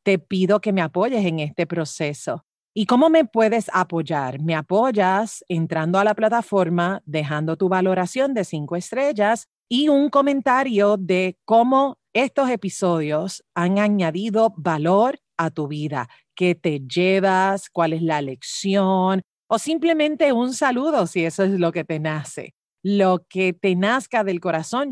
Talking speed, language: 150 wpm, Spanish